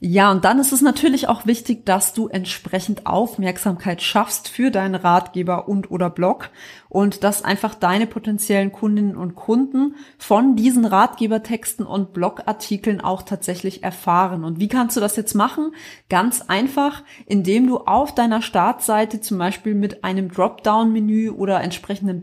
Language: German